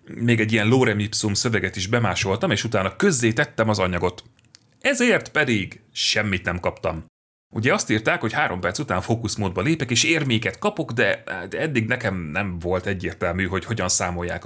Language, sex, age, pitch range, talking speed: Hungarian, male, 30-49, 95-125 Hz, 160 wpm